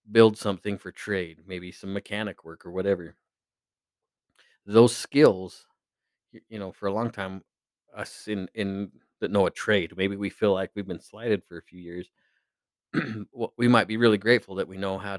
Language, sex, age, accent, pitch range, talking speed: English, male, 30-49, American, 95-110 Hz, 180 wpm